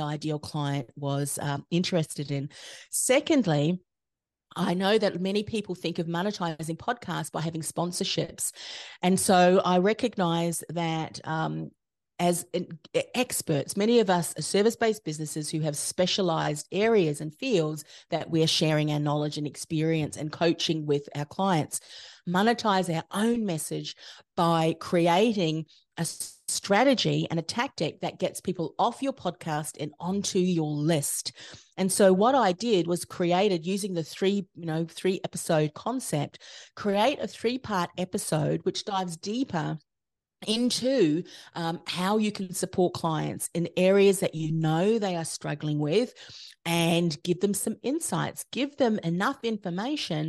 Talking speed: 145 wpm